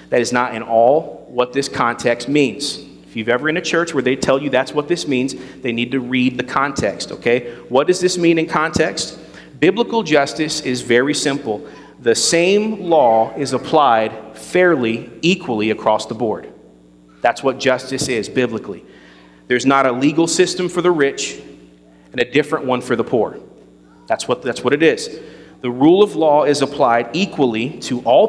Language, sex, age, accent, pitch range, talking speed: English, male, 40-59, American, 110-150 Hz, 180 wpm